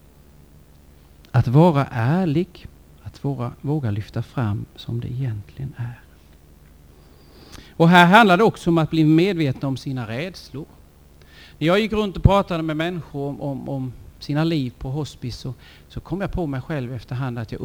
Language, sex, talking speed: Swedish, male, 165 wpm